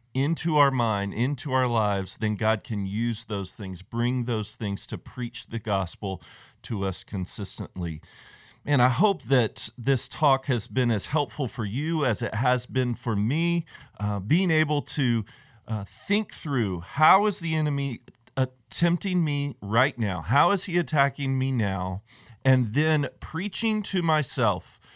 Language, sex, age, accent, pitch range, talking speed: English, male, 40-59, American, 110-140 Hz, 160 wpm